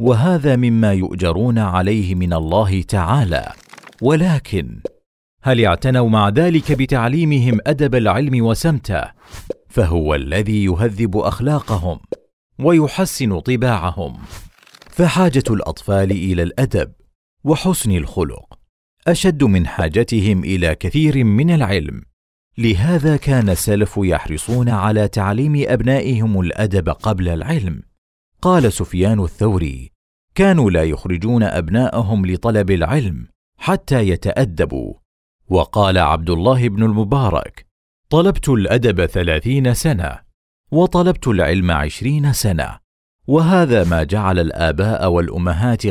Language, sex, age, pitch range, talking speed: Arabic, male, 40-59, 90-130 Hz, 95 wpm